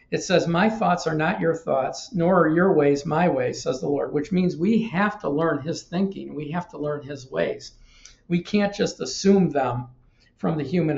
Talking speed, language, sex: 215 wpm, English, male